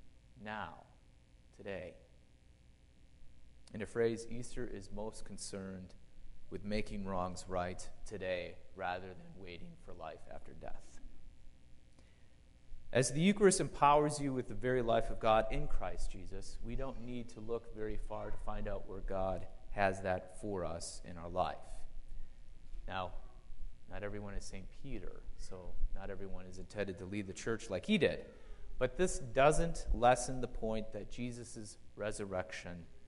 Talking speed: 145 wpm